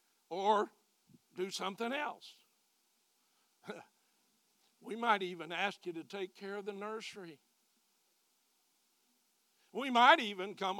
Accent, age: American, 60-79